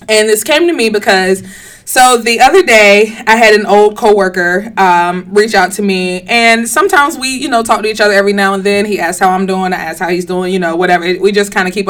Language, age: English, 20-39